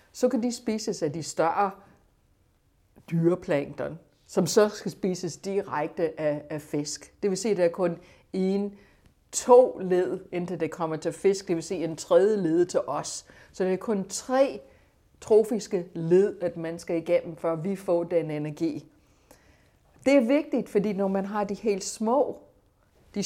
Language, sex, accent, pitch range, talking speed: Danish, female, native, 165-215 Hz, 170 wpm